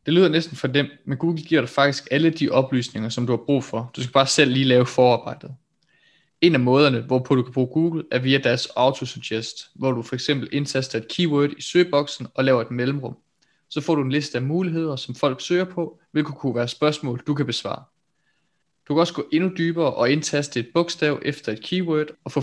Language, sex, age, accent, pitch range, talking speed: Danish, male, 20-39, native, 125-155 Hz, 220 wpm